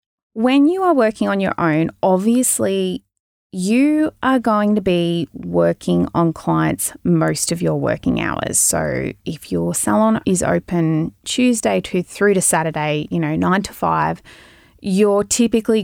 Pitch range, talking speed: 145-205 Hz, 145 wpm